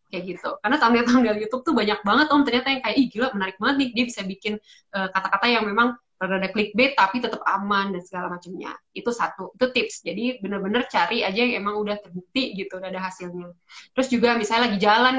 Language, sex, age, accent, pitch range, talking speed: Indonesian, female, 20-39, native, 190-245 Hz, 215 wpm